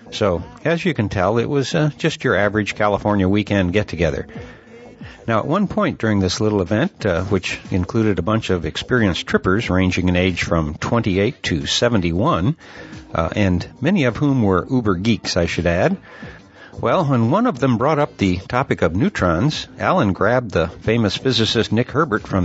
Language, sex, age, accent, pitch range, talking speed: English, male, 60-79, American, 95-125 Hz, 175 wpm